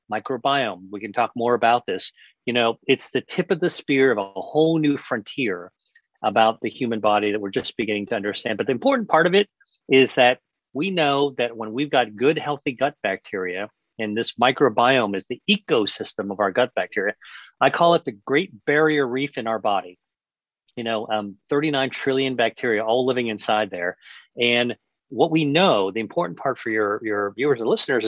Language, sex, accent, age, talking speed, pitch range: English, male, American, 40-59, 195 wpm, 110-140 Hz